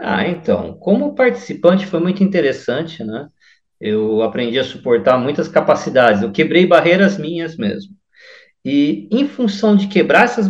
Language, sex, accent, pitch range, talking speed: Portuguese, male, Brazilian, 155-200 Hz, 145 wpm